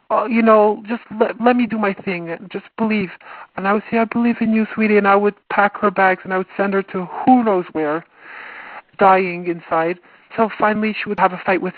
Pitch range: 170-210 Hz